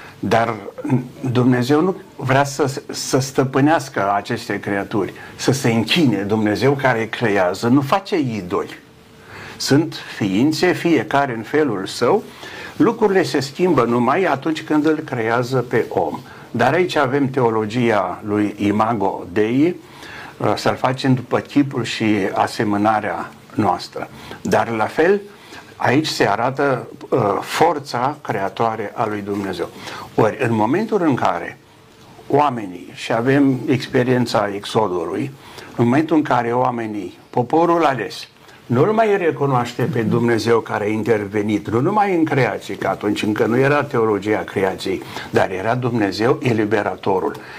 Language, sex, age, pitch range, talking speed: Romanian, male, 60-79, 110-145 Hz, 125 wpm